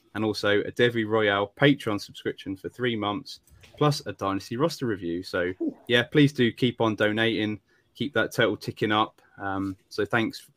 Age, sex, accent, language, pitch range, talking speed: 20-39, male, British, English, 100-120 Hz, 170 wpm